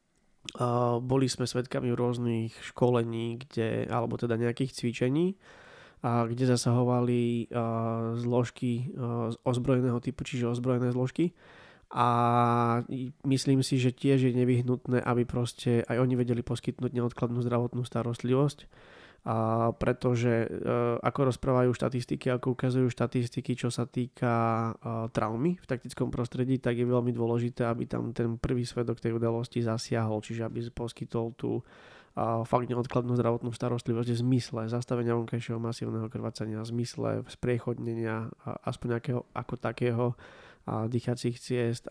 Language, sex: Slovak, male